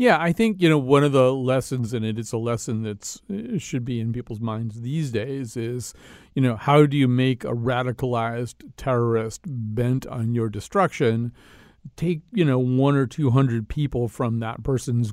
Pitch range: 115-140 Hz